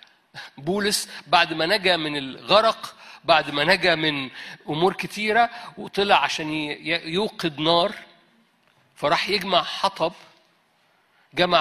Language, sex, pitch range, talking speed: Arabic, male, 155-195 Hz, 105 wpm